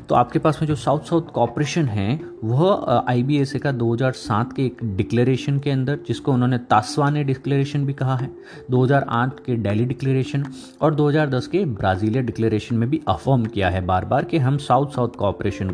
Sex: male